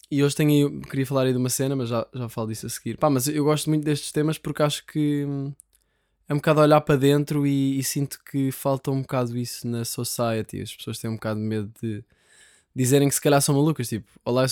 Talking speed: 245 wpm